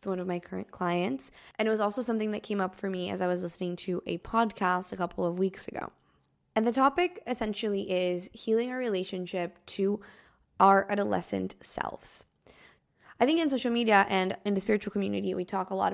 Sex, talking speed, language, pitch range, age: female, 200 wpm, English, 185-220 Hz, 20-39